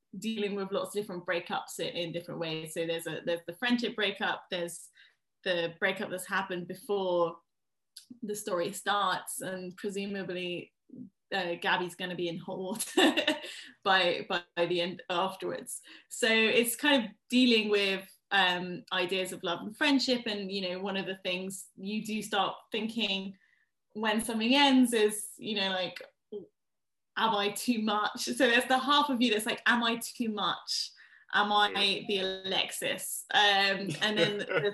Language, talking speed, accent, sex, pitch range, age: English, 160 wpm, British, female, 185-225 Hz, 10-29